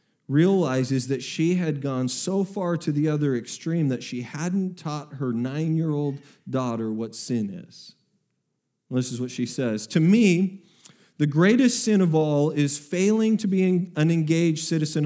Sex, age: male, 40-59